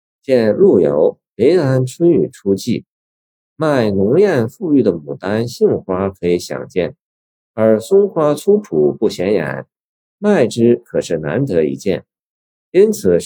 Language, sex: Chinese, male